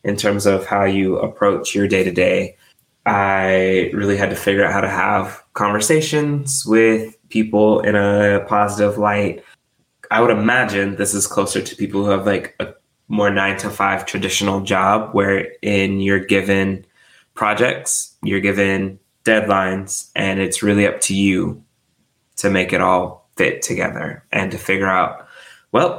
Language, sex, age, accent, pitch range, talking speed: English, male, 20-39, American, 100-110 Hz, 155 wpm